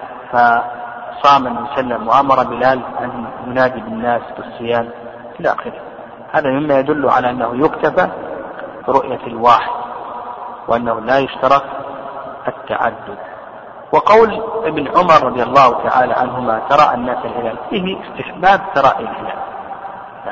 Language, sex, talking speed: Arabic, male, 115 wpm